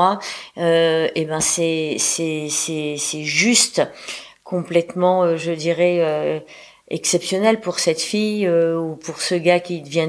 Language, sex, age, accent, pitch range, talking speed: French, female, 40-59, French, 160-180 Hz, 135 wpm